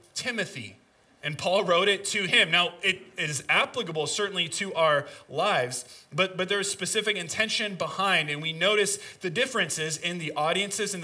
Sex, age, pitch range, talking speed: male, 20-39, 150-195 Hz, 165 wpm